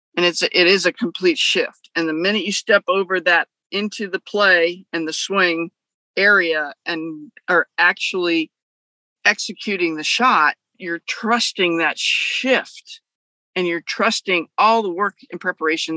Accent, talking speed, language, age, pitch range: American, 145 wpm, English, 50-69, 160-205 Hz